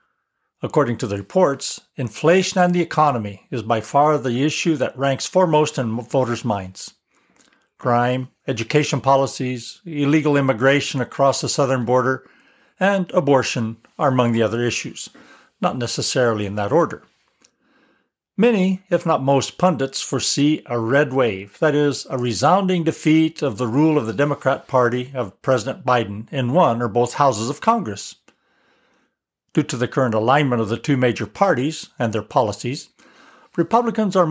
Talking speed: 150 wpm